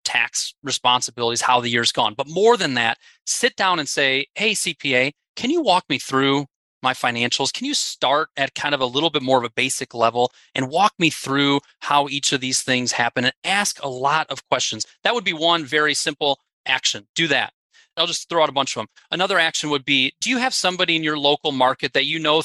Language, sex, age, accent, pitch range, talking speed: English, male, 30-49, American, 130-165 Hz, 225 wpm